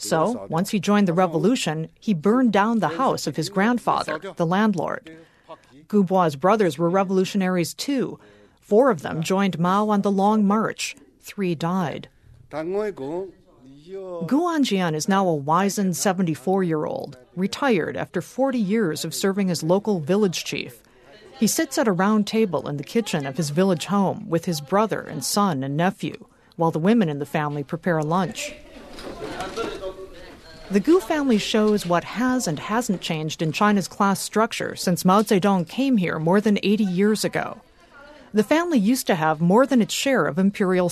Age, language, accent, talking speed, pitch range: 50-69, English, American, 165 wpm, 170-220 Hz